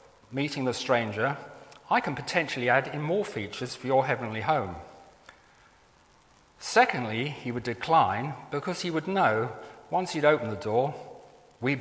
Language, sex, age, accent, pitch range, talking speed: English, male, 40-59, British, 120-155 Hz, 140 wpm